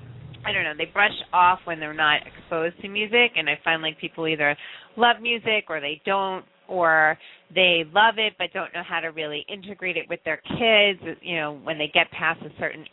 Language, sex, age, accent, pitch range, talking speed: English, female, 30-49, American, 150-185 Hz, 215 wpm